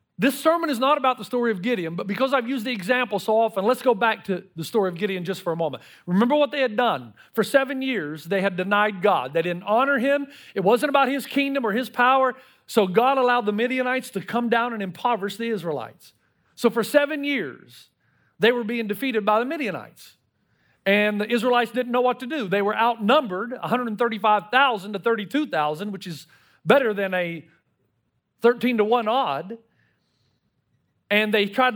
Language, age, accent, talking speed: English, 40-59, American, 195 wpm